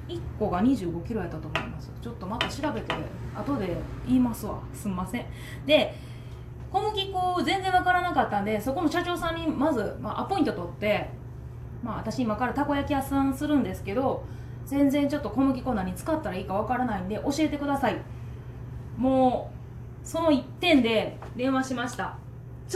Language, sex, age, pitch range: Japanese, female, 20-39, 210-310 Hz